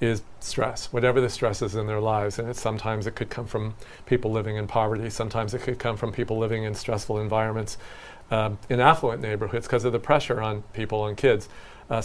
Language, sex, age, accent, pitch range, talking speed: English, male, 40-59, American, 110-130 Hz, 215 wpm